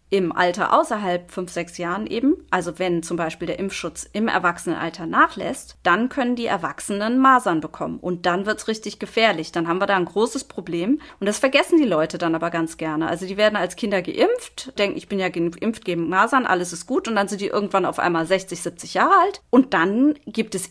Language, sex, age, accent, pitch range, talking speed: German, female, 30-49, German, 175-235 Hz, 215 wpm